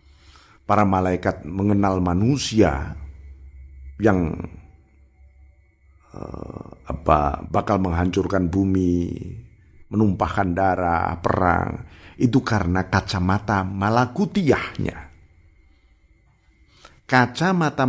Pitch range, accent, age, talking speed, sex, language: 75-95 Hz, native, 50-69, 55 wpm, male, Indonesian